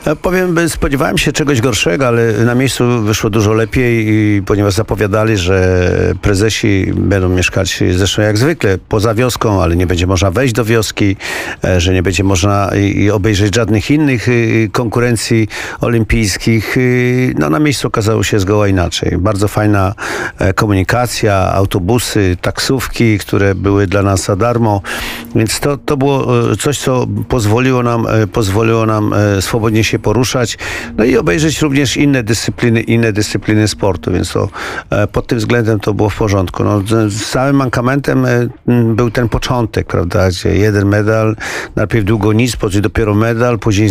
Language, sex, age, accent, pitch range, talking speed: Polish, male, 50-69, native, 105-125 Hz, 145 wpm